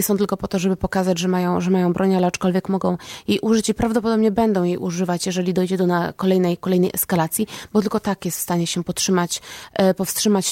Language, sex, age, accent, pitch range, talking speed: Polish, female, 20-39, native, 185-215 Hz, 210 wpm